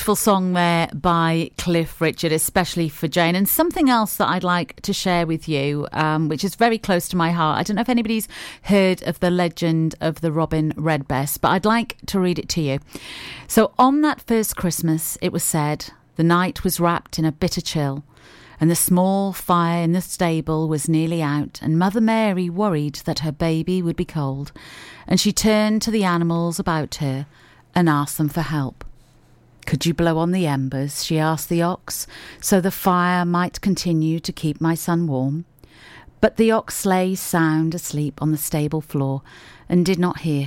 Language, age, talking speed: English, 40-59, 195 wpm